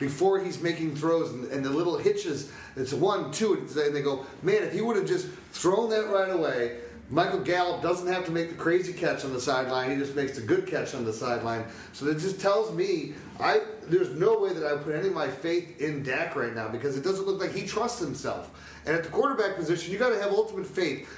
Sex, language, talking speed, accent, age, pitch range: male, English, 245 wpm, American, 30-49, 145-195 Hz